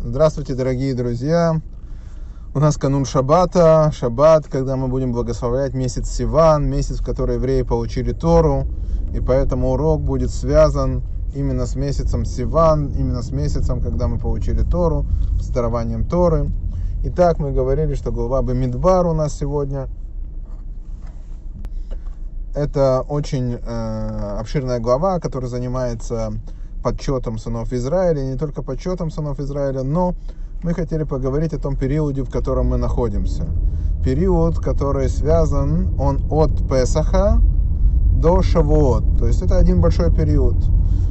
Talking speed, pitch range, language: 130 wpm, 85-140 Hz, Russian